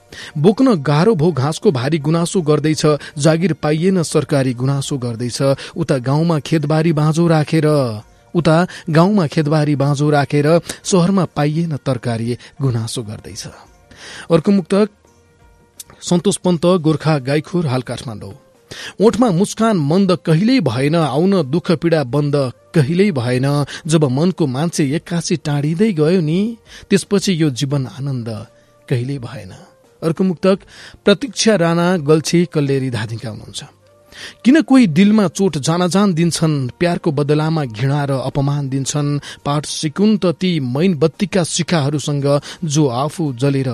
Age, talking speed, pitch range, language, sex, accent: 30-49, 115 wpm, 135-175 Hz, English, male, Indian